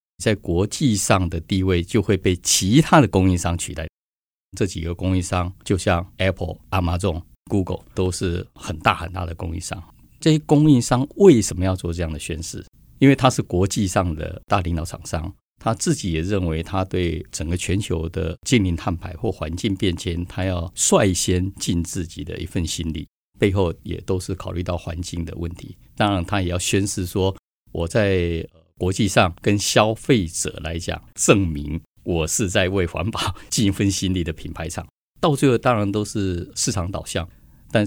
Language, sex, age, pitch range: Chinese, male, 50-69, 85-100 Hz